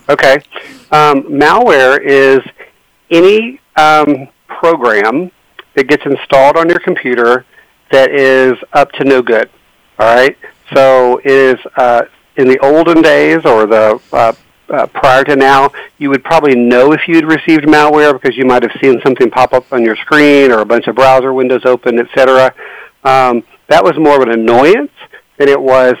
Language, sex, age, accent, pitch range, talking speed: English, male, 50-69, American, 125-145 Hz, 165 wpm